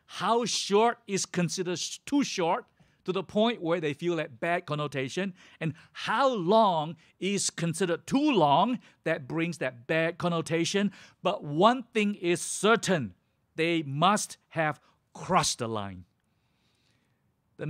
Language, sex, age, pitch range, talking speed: English, male, 50-69, 150-210 Hz, 130 wpm